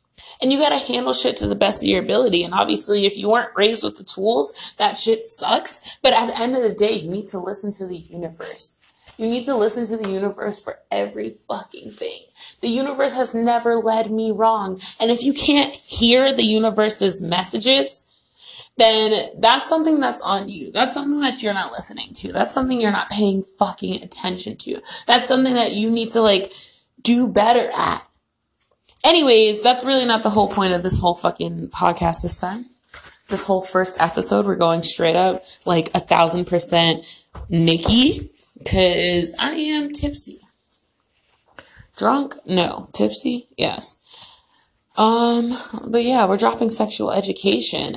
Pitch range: 180-245 Hz